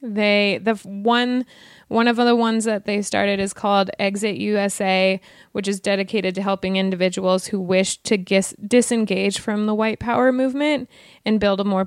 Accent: American